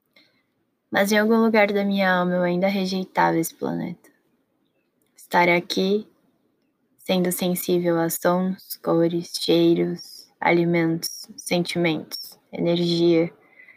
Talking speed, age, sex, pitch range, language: 100 wpm, 10-29, female, 170-195 Hz, Portuguese